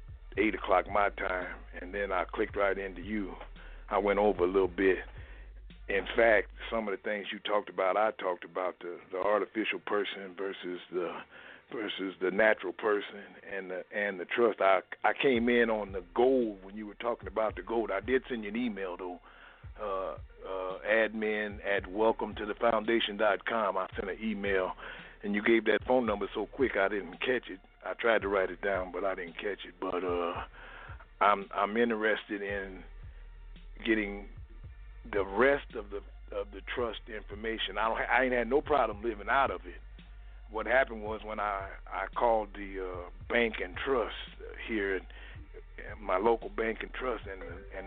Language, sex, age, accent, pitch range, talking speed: English, male, 60-79, American, 95-115 Hz, 185 wpm